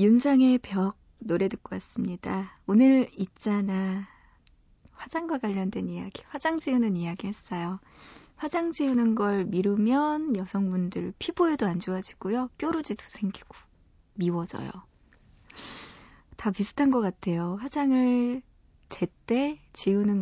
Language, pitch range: Korean, 180-255 Hz